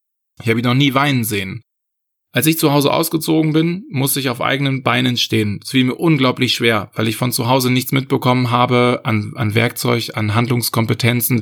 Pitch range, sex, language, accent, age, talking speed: 115-135 Hz, male, German, German, 20-39, 195 wpm